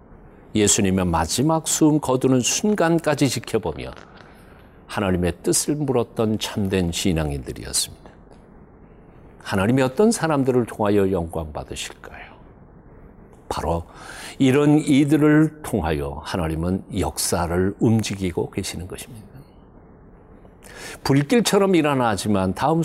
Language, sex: Korean, male